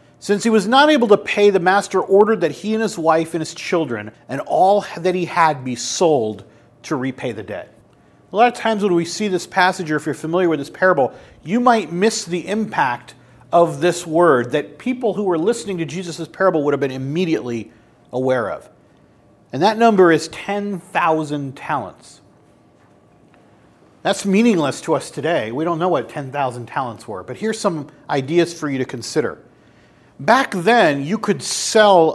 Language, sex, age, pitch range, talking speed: English, male, 40-59, 150-195 Hz, 185 wpm